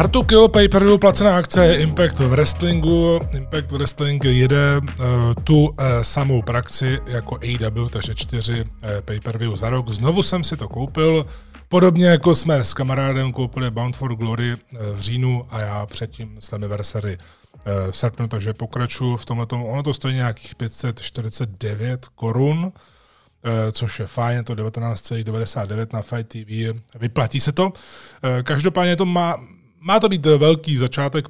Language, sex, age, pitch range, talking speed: Czech, male, 20-39, 115-145 Hz, 155 wpm